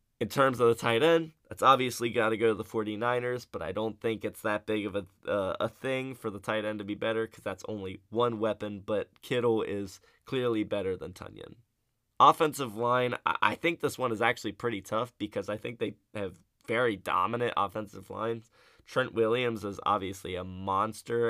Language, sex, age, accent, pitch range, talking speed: English, male, 20-39, American, 105-125 Hz, 200 wpm